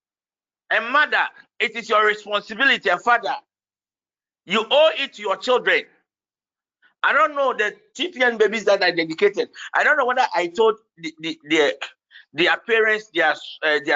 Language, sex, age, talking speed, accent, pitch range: English, male, 50-69, 150 wpm, Nigerian, 180-240 Hz